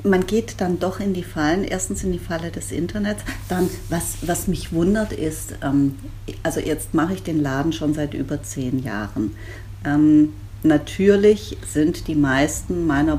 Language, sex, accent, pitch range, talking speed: German, female, German, 105-155 Hz, 170 wpm